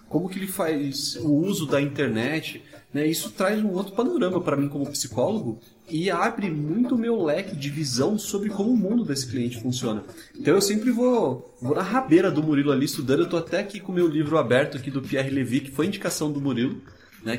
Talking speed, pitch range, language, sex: 215 wpm, 130-170 Hz, Portuguese, male